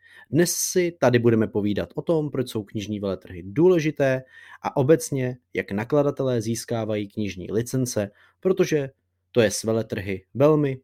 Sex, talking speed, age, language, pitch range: male, 140 wpm, 30-49, Czech, 100-135 Hz